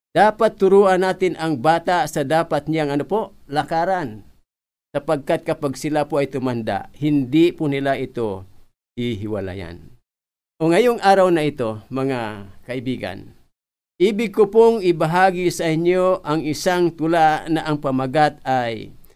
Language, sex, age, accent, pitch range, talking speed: Filipino, male, 50-69, native, 120-175 Hz, 130 wpm